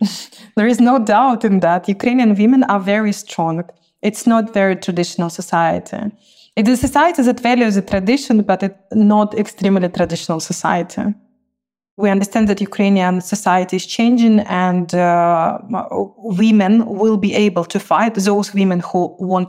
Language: English